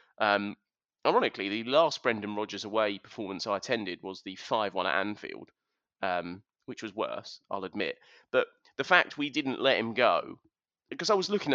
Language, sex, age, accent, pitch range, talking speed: English, male, 30-49, British, 115-155 Hz, 170 wpm